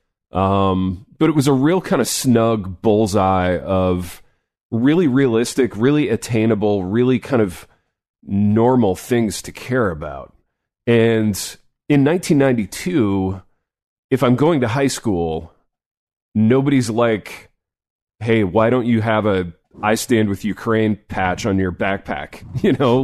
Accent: American